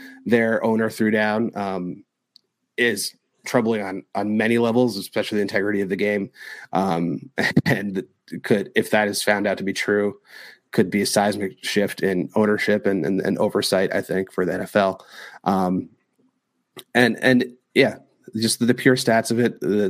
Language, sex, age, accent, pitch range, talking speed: English, male, 30-49, American, 95-115 Hz, 165 wpm